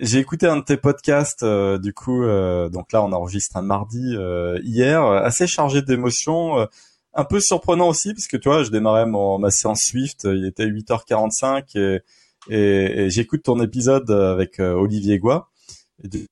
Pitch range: 100-135 Hz